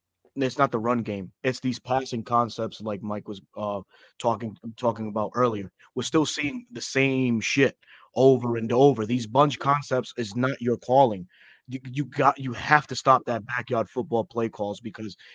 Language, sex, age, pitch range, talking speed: English, male, 20-39, 120-140 Hz, 175 wpm